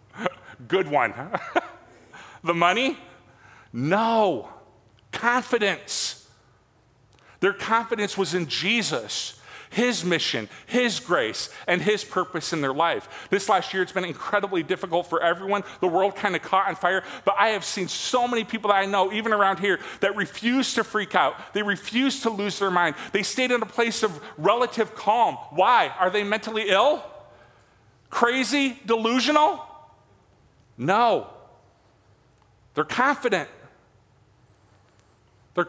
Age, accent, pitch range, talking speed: 40-59, American, 145-210 Hz, 135 wpm